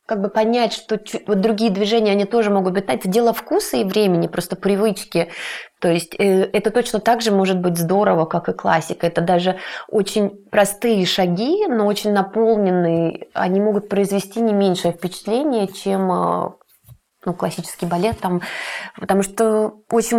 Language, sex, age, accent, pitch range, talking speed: Russian, female, 20-39, native, 170-205 Hz, 150 wpm